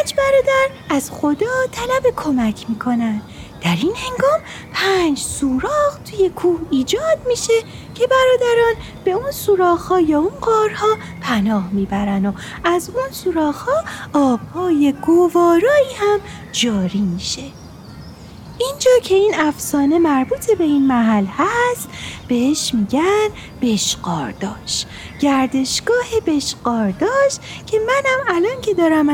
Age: 30-49